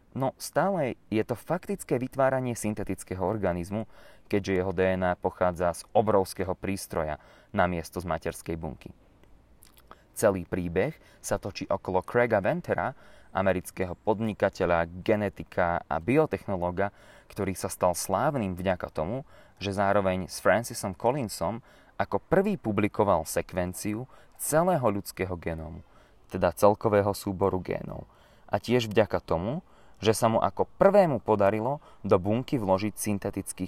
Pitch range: 90-110 Hz